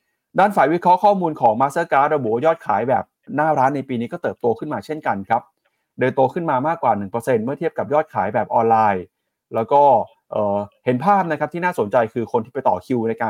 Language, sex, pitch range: Thai, male, 115-150 Hz